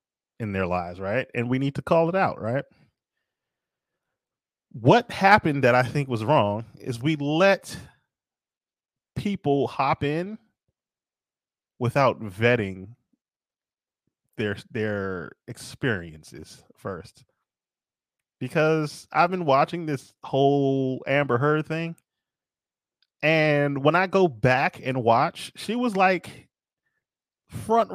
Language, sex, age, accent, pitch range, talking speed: English, male, 30-49, American, 130-205 Hz, 110 wpm